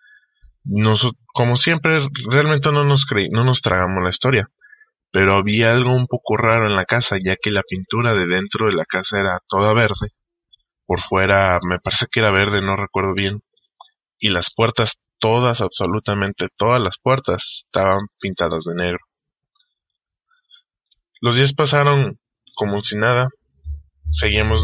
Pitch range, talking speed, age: 95-125 Hz, 150 wpm, 20-39